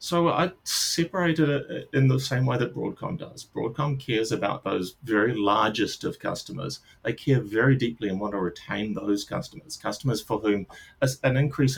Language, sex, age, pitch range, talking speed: English, male, 30-49, 105-140 Hz, 175 wpm